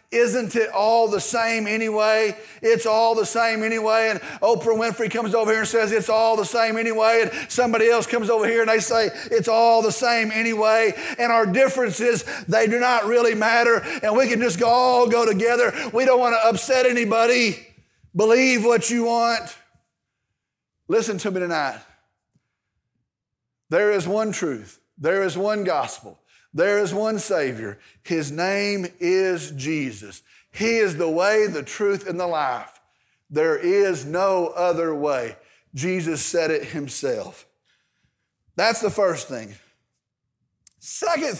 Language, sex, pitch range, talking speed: English, male, 185-240 Hz, 155 wpm